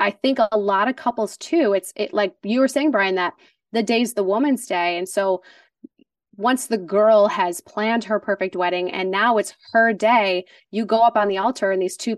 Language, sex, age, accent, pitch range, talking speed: English, female, 20-39, American, 200-260 Hz, 215 wpm